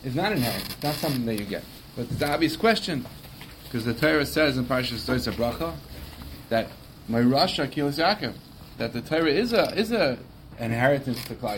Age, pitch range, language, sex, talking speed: 30-49, 120-155 Hz, English, male, 185 wpm